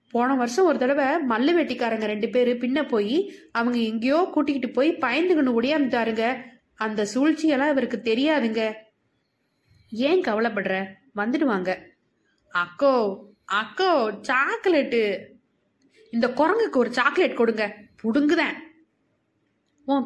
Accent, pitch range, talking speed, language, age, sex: native, 220-300 Hz, 100 wpm, Tamil, 20-39, female